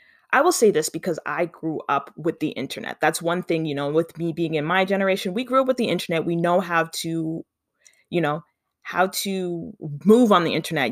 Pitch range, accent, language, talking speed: 150-190 Hz, American, English, 220 wpm